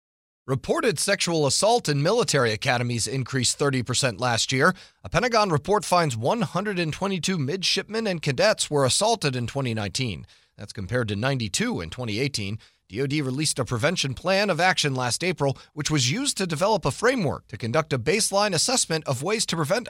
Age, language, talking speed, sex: 30-49, English, 165 wpm, male